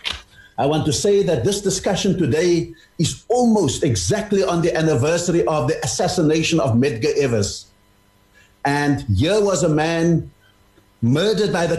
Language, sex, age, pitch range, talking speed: English, male, 60-79, 115-195 Hz, 145 wpm